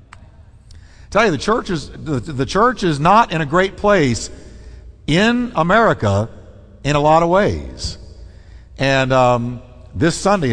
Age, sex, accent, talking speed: 60-79, male, American, 125 wpm